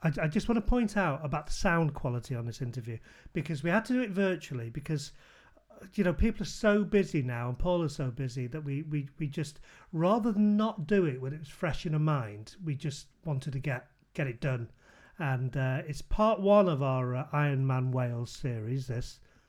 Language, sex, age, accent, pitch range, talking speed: English, male, 40-59, British, 135-175 Hz, 220 wpm